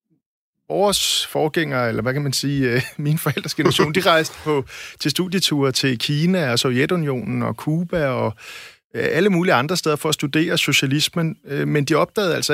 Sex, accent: male, native